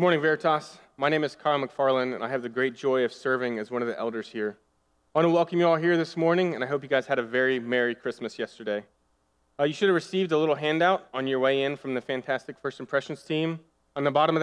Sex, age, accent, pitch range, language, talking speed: male, 20-39, American, 120-155 Hz, English, 265 wpm